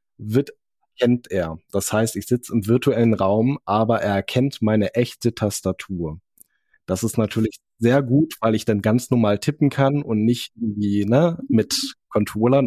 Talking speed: 145 wpm